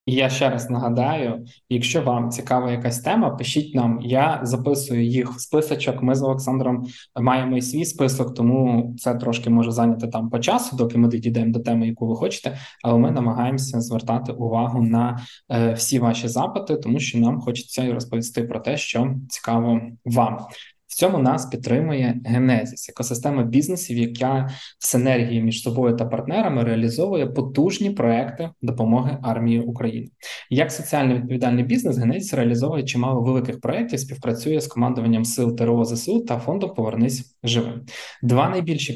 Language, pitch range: Ukrainian, 115-135 Hz